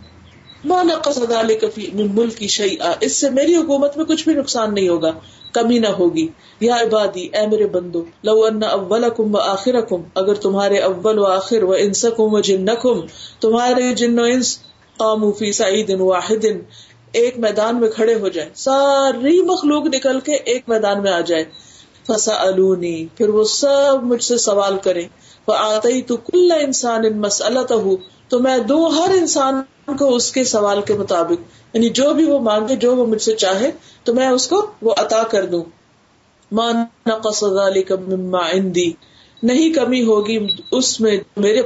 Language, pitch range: Urdu, 195-260 Hz